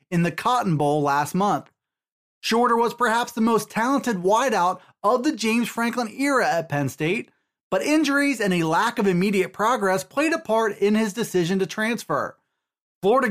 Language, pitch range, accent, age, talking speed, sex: English, 190-255 Hz, American, 30-49, 170 wpm, male